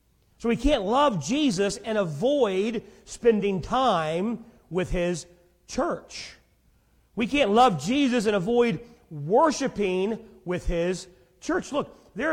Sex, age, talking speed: male, 40-59, 115 wpm